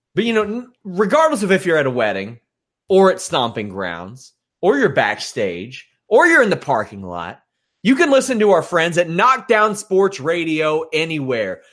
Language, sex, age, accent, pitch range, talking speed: English, male, 30-49, American, 135-185 Hz, 175 wpm